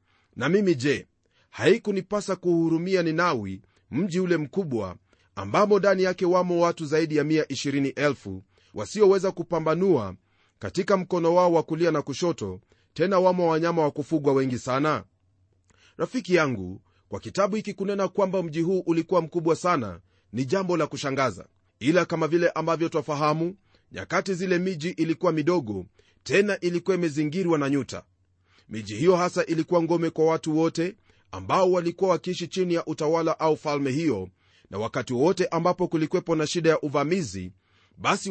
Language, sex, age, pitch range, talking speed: Swahili, male, 30-49, 110-180 Hz, 145 wpm